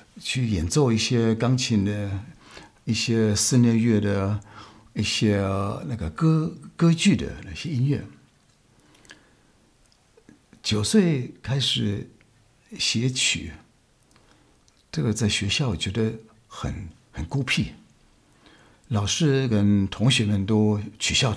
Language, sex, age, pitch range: Chinese, male, 60-79, 105-135 Hz